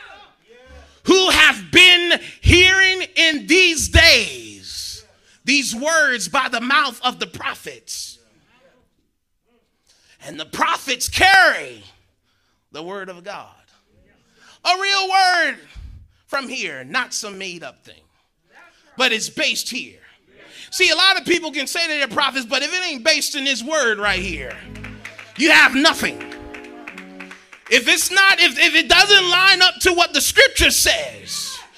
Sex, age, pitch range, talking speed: male, 30-49, 245-345 Hz, 140 wpm